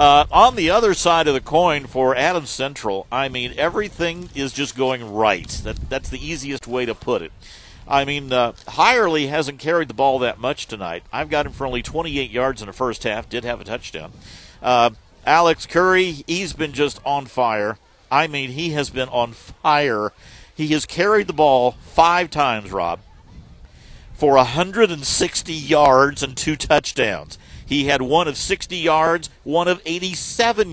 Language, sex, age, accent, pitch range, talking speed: English, male, 50-69, American, 120-160 Hz, 175 wpm